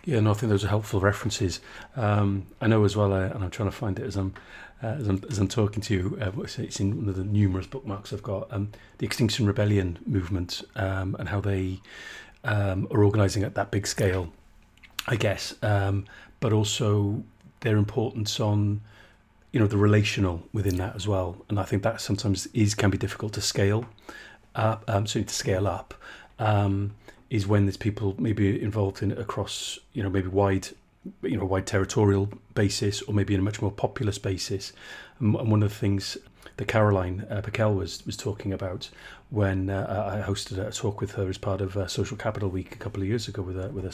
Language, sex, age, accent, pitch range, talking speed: English, male, 30-49, British, 95-105 Hz, 210 wpm